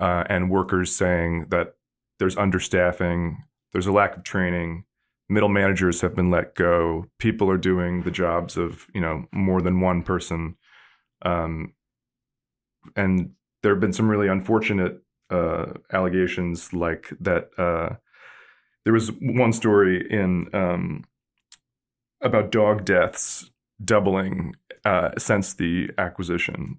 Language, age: English, 20-39